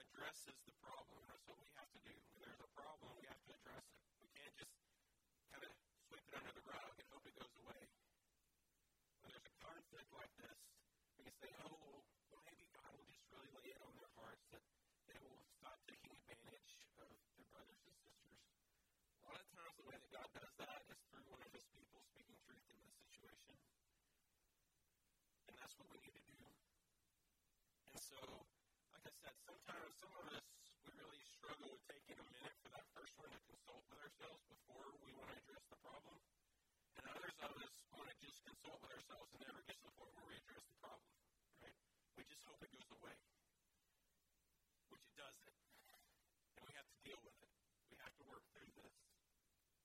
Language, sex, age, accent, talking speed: English, male, 40-59, American, 200 wpm